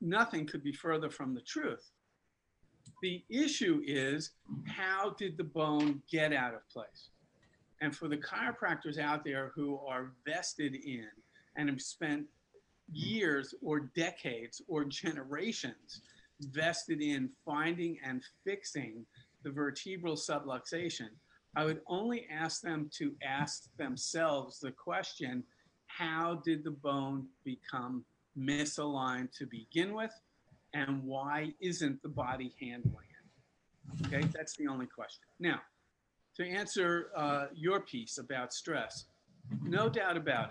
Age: 50-69